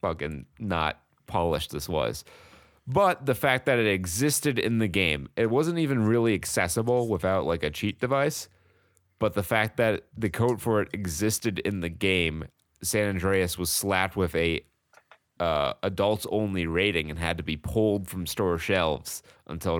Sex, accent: male, American